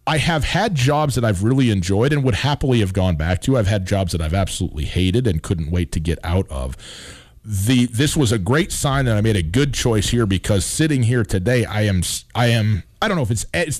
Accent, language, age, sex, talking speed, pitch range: American, English, 40-59, male, 245 wpm, 95-135 Hz